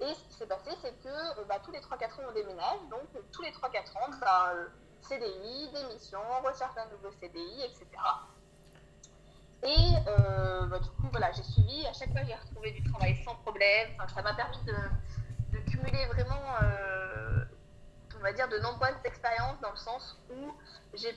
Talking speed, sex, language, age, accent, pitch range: 185 wpm, female, French, 20-39, French, 180-265 Hz